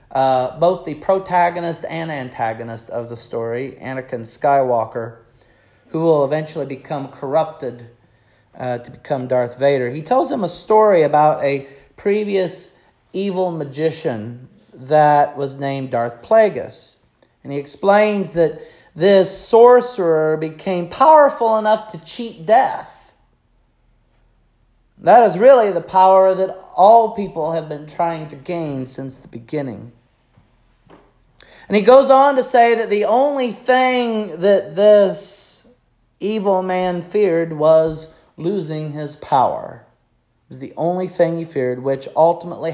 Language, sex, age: English, male, 40-59